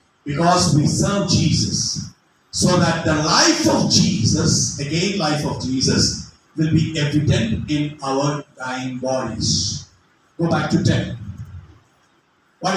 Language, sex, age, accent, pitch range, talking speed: English, male, 50-69, Indian, 150-205 Hz, 120 wpm